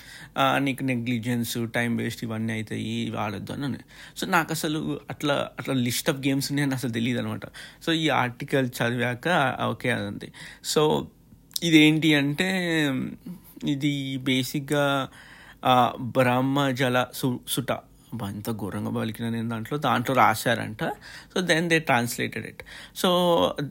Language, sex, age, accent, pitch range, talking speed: Telugu, male, 60-79, native, 120-145 Hz, 115 wpm